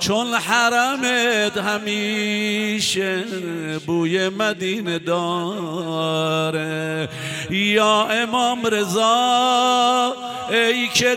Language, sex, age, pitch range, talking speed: Persian, male, 50-69, 170-215 Hz, 60 wpm